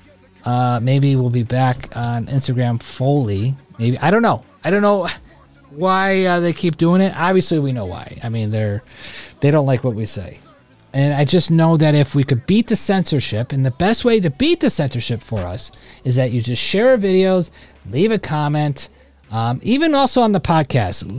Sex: male